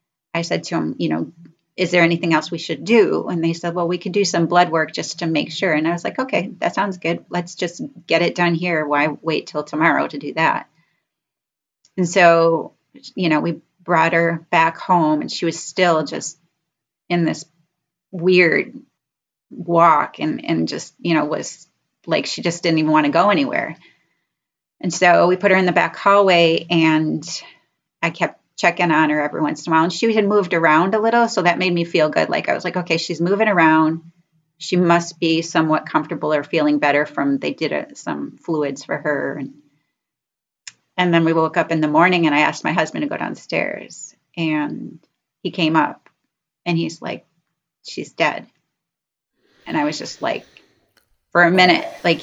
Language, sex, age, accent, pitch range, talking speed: English, female, 30-49, American, 155-175 Hz, 200 wpm